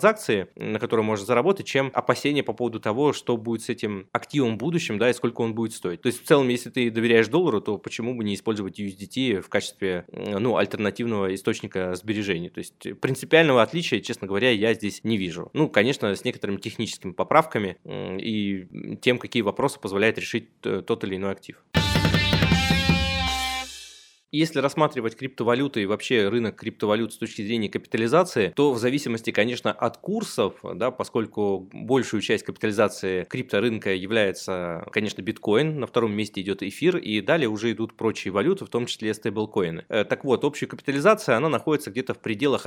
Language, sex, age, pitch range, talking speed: Russian, male, 20-39, 100-125 Hz, 165 wpm